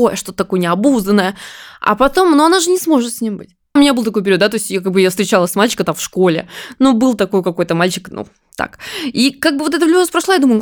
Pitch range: 195-270 Hz